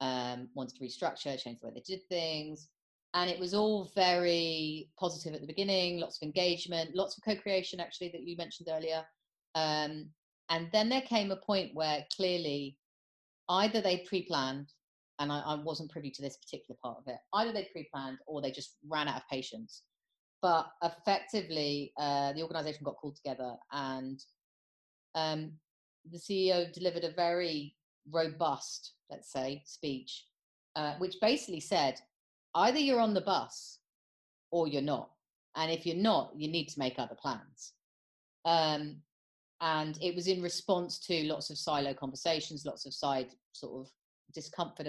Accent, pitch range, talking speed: British, 140-185 Hz, 160 wpm